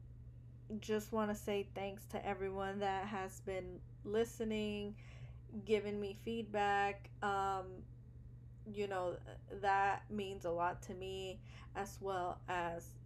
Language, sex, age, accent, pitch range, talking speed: English, female, 20-39, American, 170-200 Hz, 120 wpm